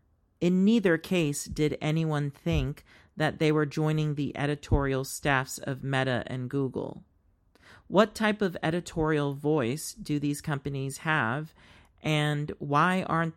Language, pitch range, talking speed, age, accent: English, 135-160 Hz, 130 wpm, 40-59, American